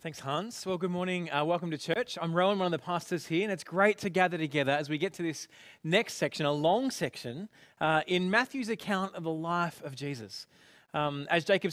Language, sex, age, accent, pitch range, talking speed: English, male, 20-39, Australian, 145-185 Hz, 225 wpm